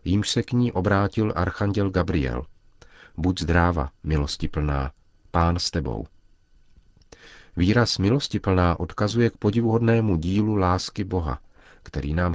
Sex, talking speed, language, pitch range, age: male, 110 wpm, Czech, 80-100 Hz, 40-59